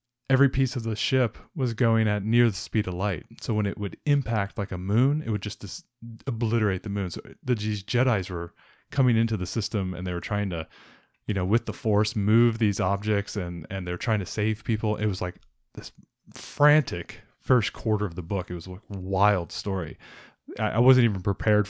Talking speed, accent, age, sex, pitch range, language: 205 wpm, American, 20-39, male, 100-125 Hz, English